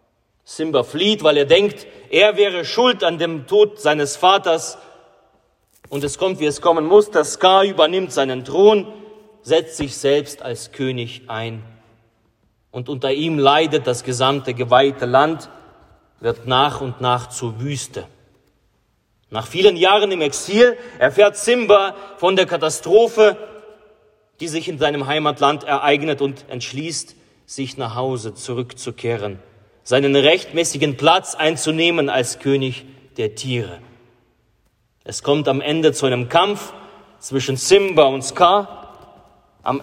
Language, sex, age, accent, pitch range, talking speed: German, male, 40-59, German, 125-170 Hz, 130 wpm